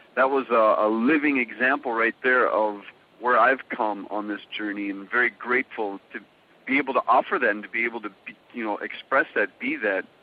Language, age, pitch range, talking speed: English, 40-59, 110-145 Hz, 205 wpm